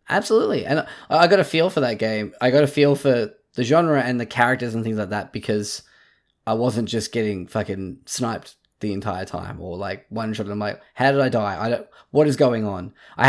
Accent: Australian